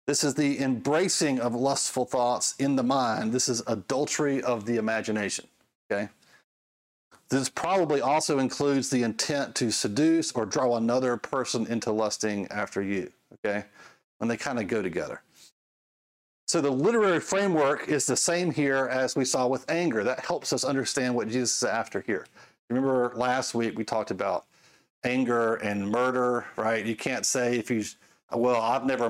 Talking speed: 165 wpm